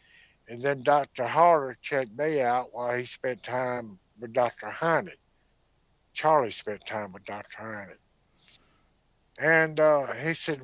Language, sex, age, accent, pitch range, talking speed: German, male, 60-79, American, 115-145 Hz, 135 wpm